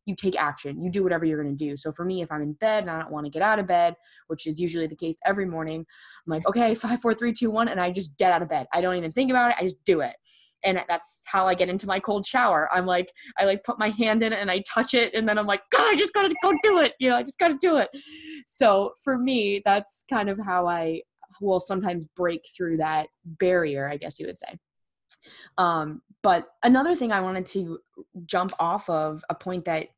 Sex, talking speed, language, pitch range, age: female, 265 wpm, English, 160-210 Hz, 20-39